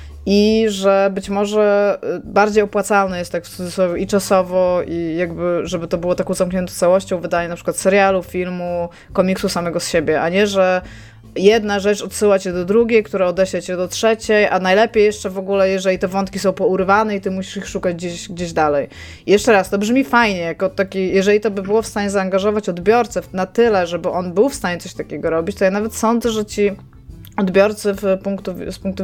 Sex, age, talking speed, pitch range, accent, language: female, 20-39, 200 wpm, 175-210 Hz, native, Polish